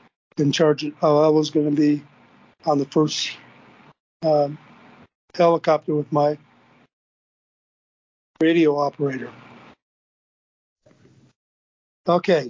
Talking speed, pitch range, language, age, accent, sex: 80 wpm, 145-170 Hz, English, 50-69, American, male